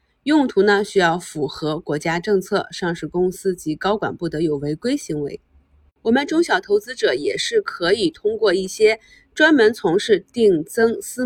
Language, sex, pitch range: Chinese, female, 170-245 Hz